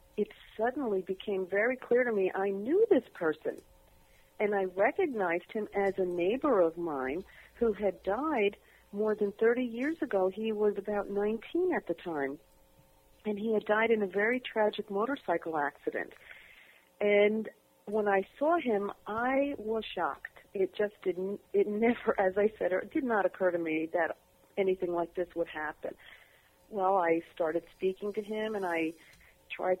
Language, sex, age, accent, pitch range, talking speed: English, female, 50-69, American, 180-215 Hz, 165 wpm